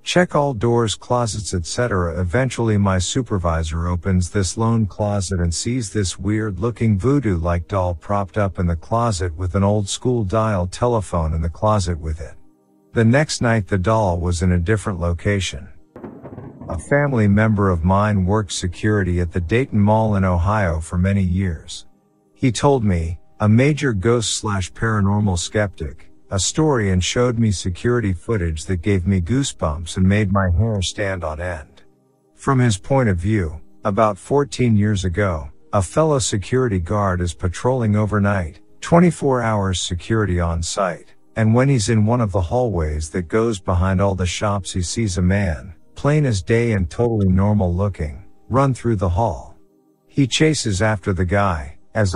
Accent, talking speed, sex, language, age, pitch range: American, 165 wpm, male, English, 50-69, 90-115 Hz